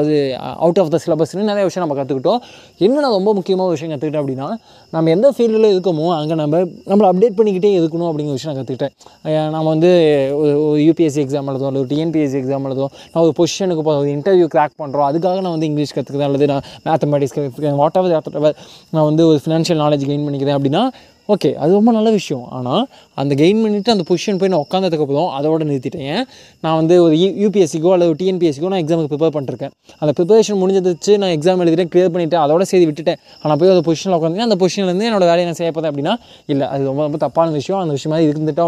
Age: 20-39